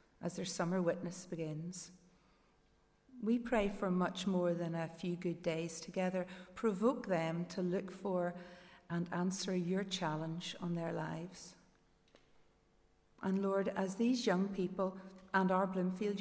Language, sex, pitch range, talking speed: English, female, 175-195 Hz, 135 wpm